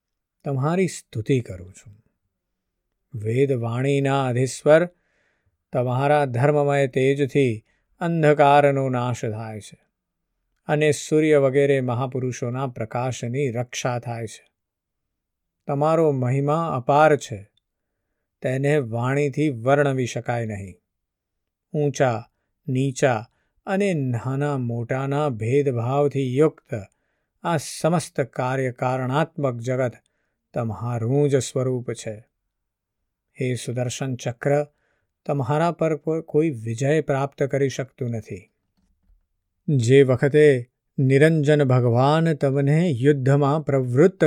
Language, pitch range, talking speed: Gujarati, 120-145 Hz, 65 wpm